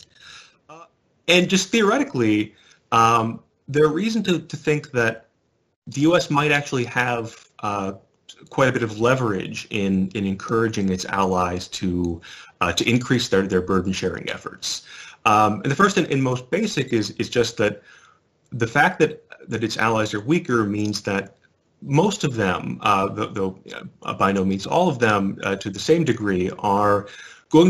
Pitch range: 95-135 Hz